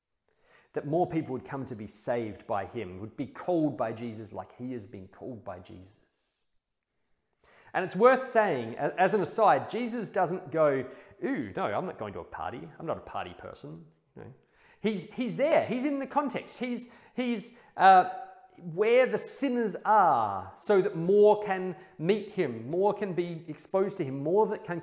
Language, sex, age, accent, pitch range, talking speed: English, male, 30-49, Australian, 145-215 Hz, 180 wpm